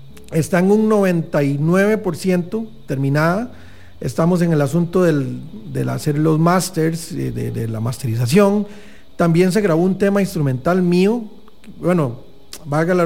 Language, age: English, 40-59